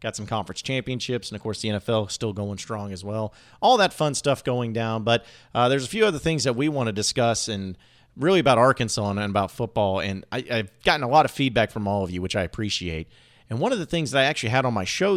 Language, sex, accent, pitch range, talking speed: English, male, American, 105-130 Hz, 265 wpm